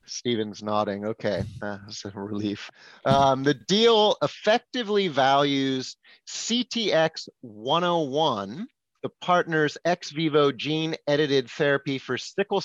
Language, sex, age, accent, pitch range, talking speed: English, male, 30-49, American, 120-160 Hz, 105 wpm